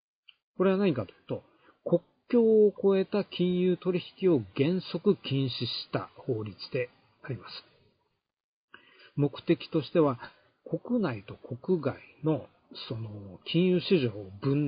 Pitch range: 125-180 Hz